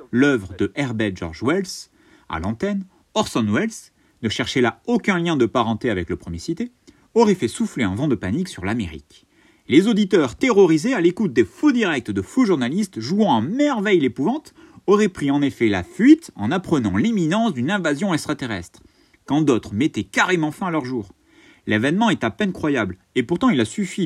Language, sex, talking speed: French, male, 185 wpm